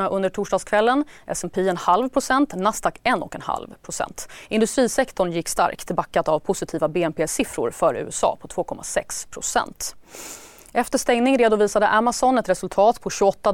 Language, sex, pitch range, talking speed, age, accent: Swedish, female, 175-225 Hz, 120 wpm, 30-49, native